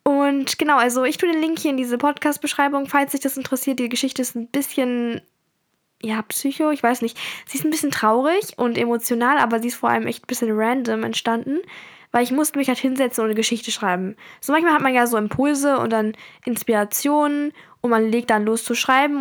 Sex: female